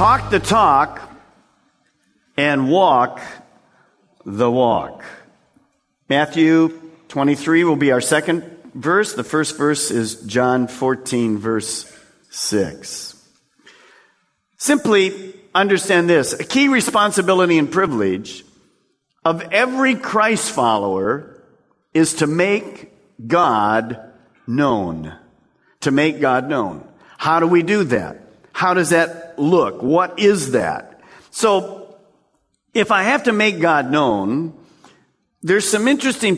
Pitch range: 145-200 Hz